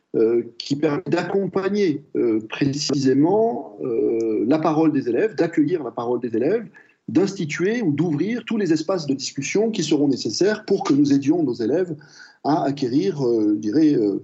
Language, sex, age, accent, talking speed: French, male, 40-59, French, 145 wpm